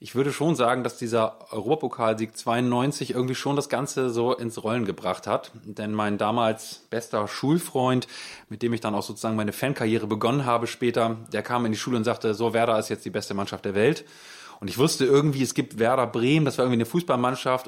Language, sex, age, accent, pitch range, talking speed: German, male, 20-39, German, 110-130 Hz, 210 wpm